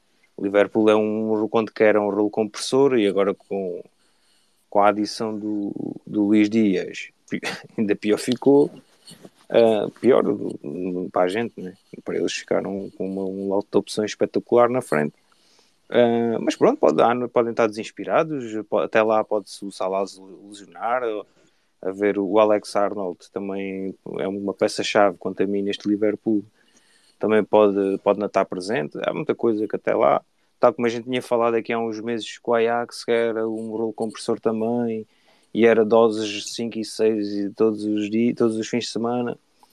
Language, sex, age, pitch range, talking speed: Portuguese, male, 20-39, 100-120 Hz, 170 wpm